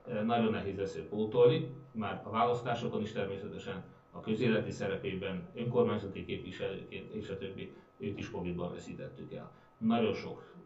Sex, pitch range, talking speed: male, 100-125 Hz, 130 wpm